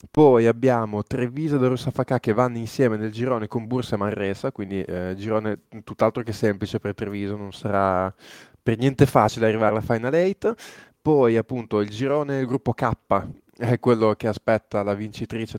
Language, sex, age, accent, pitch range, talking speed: Italian, male, 20-39, native, 105-125 Hz, 175 wpm